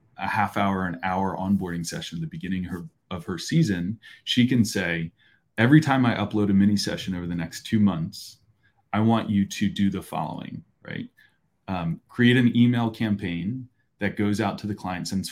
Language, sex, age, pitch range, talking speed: English, male, 30-49, 95-115 Hz, 190 wpm